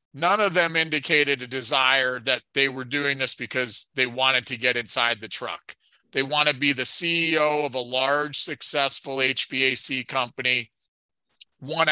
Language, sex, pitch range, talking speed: English, male, 130-155 Hz, 160 wpm